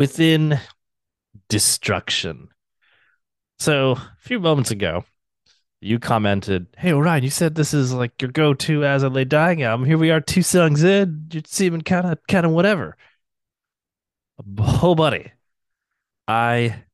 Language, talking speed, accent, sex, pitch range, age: English, 140 wpm, American, male, 95-130 Hz, 20-39